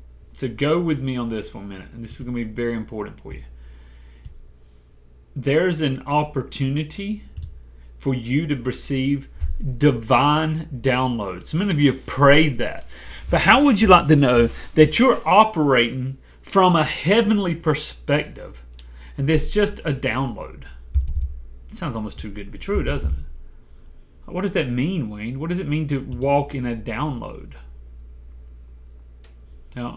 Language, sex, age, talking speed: English, male, 30-49, 155 wpm